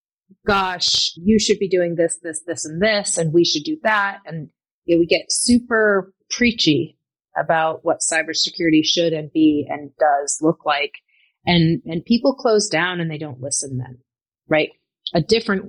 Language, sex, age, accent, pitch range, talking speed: English, female, 30-49, American, 155-190 Hz, 165 wpm